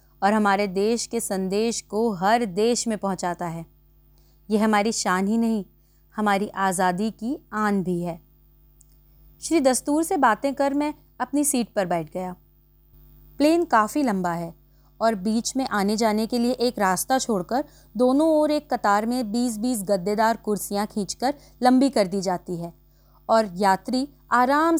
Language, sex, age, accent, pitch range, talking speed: Hindi, female, 30-49, native, 190-250 Hz, 155 wpm